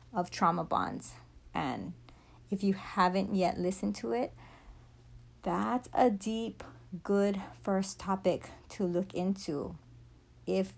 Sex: female